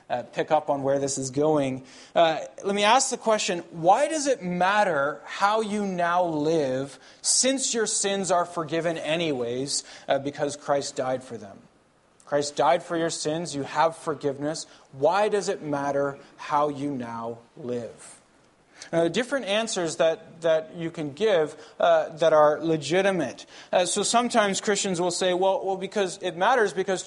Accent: American